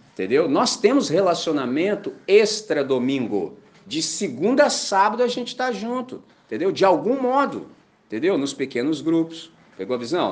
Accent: Brazilian